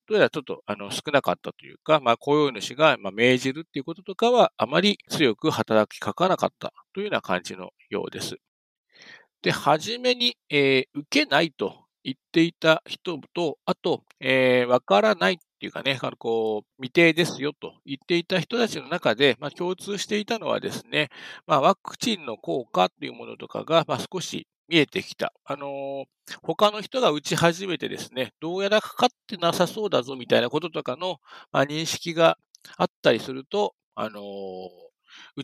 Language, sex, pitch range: Japanese, male, 130-190 Hz